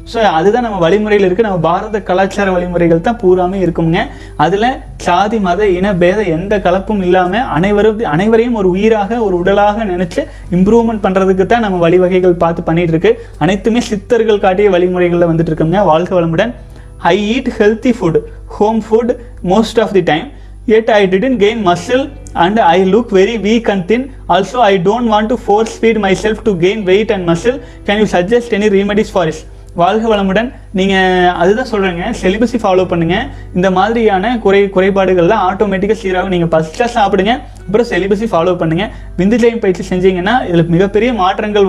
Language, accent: Tamil, native